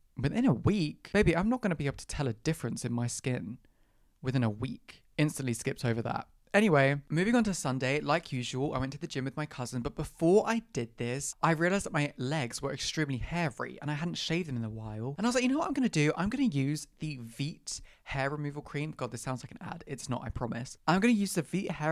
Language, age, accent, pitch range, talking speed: English, 20-39, British, 130-180 Hz, 265 wpm